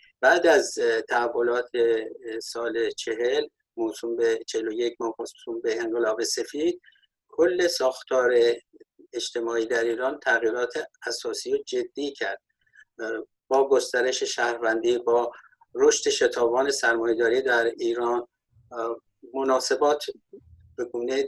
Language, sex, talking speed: Persian, male, 90 wpm